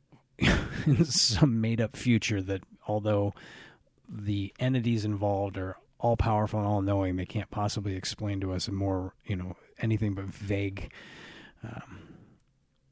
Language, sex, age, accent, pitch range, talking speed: English, male, 30-49, American, 100-120 Hz, 135 wpm